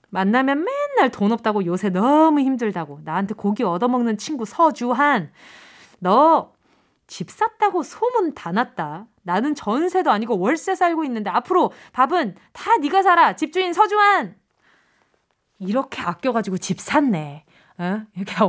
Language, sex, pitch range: Korean, female, 195-290 Hz